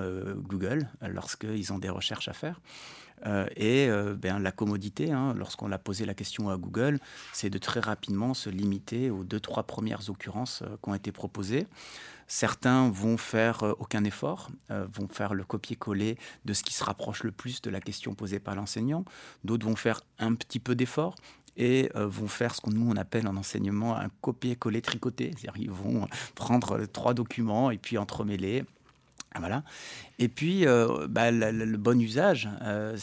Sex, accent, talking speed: male, French, 180 wpm